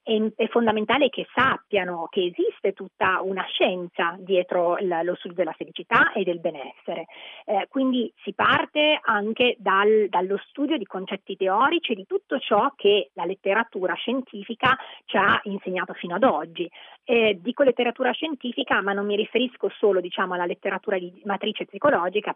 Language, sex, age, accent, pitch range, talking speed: Italian, female, 30-49, native, 185-235 Hz, 155 wpm